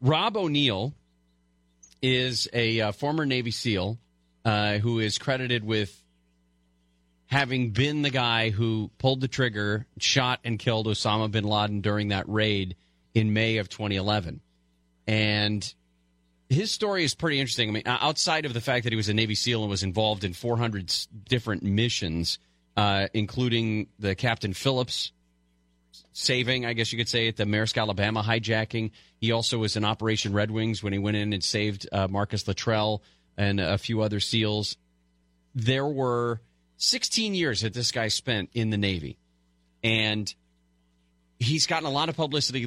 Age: 40-59